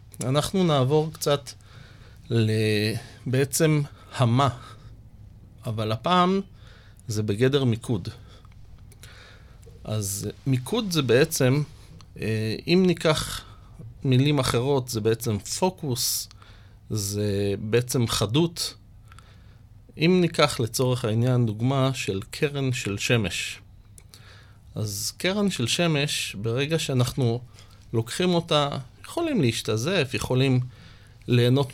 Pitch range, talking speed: 110-145 Hz, 85 wpm